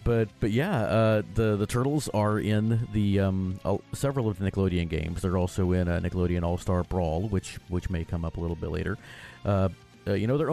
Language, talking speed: English, 215 wpm